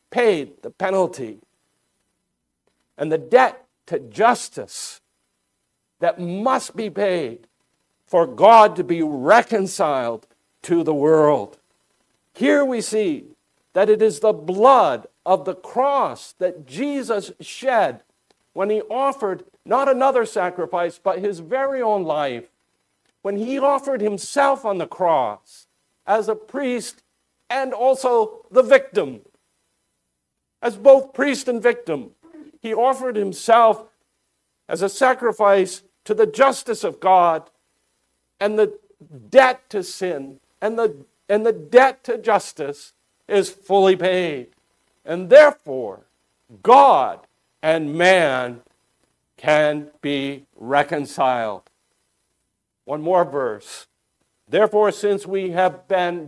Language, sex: English, male